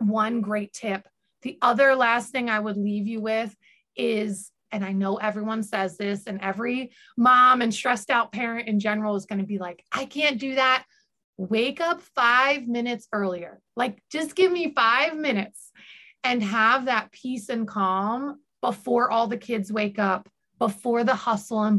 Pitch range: 200-255 Hz